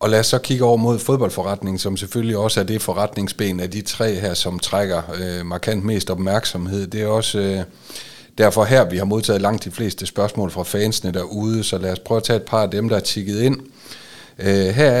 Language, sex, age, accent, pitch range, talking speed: Danish, male, 30-49, native, 95-115 Hz, 210 wpm